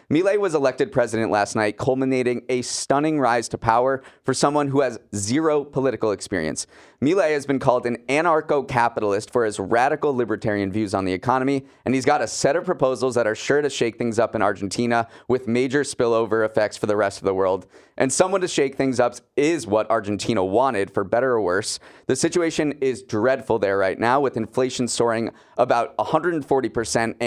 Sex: male